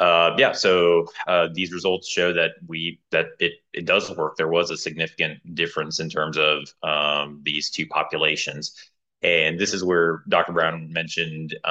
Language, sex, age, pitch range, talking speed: English, male, 30-49, 80-100 Hz, 170 wpm